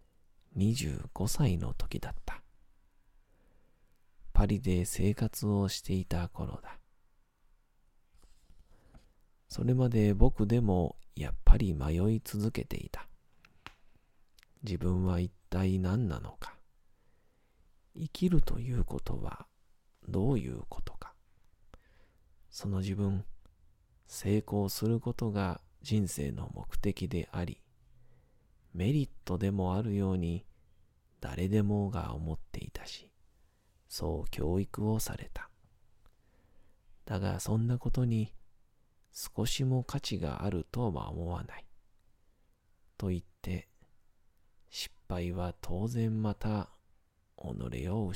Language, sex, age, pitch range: Japanese, male, 40-59, 90-110 Hz